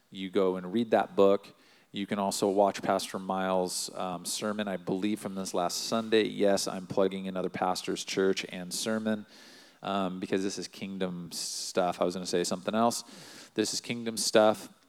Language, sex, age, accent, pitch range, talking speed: English, male, 40-59, American, 95-110 Hz, 180 wpm